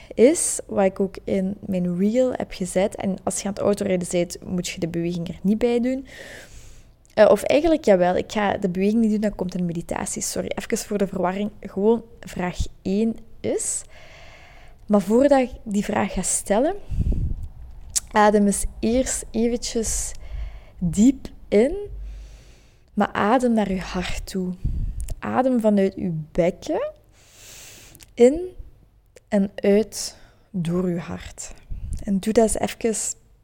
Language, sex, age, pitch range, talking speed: Dutch, female, 20-39, 170-220 Hz, 145 wpm